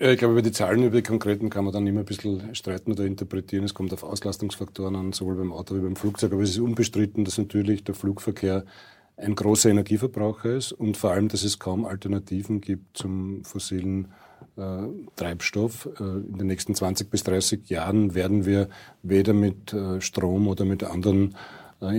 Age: 40-59